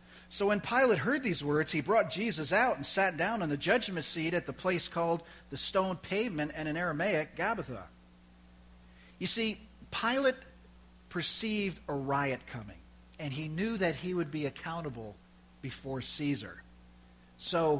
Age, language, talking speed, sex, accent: 50-69, English, 155 wpm, male, American